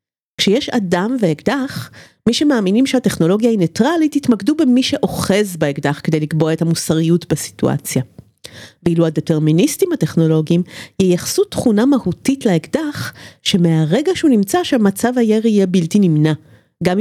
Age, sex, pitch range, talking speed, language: 40-59, female, 160-235 Hz, 115 wpm, Hebrew